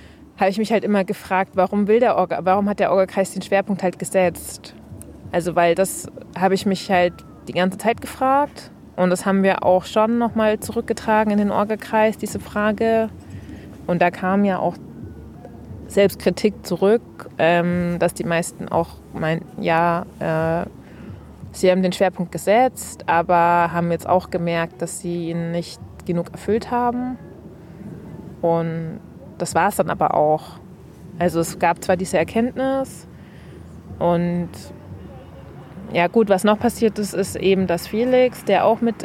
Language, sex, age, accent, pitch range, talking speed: German, female, 20-39, German, 170-205 Hz, 155 wpm